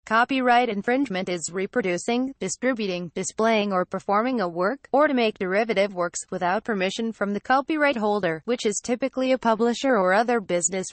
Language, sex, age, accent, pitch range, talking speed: English, female, 20-39, American, 185-240 Hz, 160 wpm